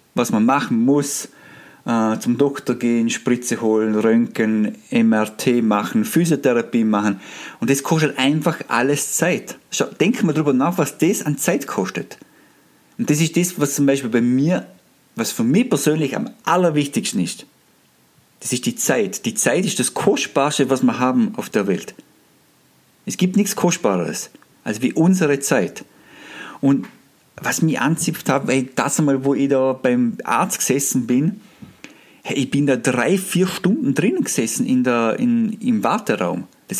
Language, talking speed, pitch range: German, 160 wpm, 130-185 Hz